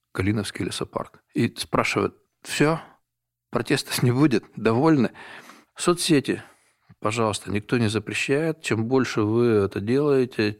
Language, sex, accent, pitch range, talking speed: Russian, male, native, 105-130 Hz, 110 wpm